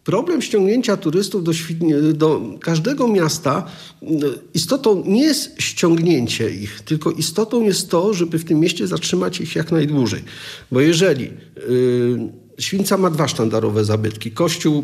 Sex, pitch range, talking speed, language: male, 140-180 Hz, 130 wpm, Polish